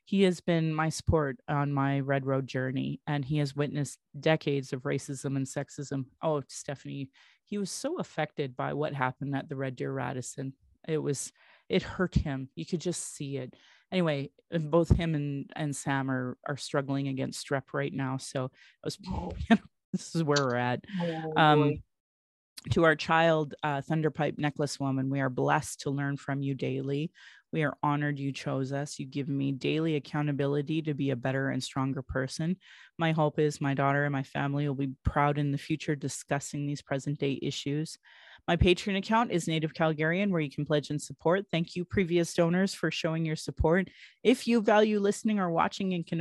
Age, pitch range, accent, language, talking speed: 30-49, 140-170 Hz, American, English, 185 wpm